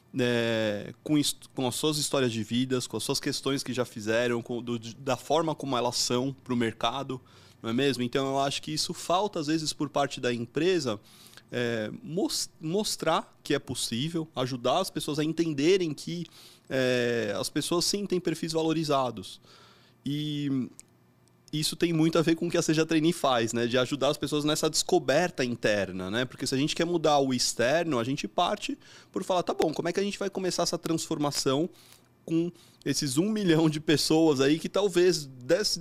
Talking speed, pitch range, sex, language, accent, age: 185 wpm, 125-165 Hz, male, Portuguese, Brazilian, 20-39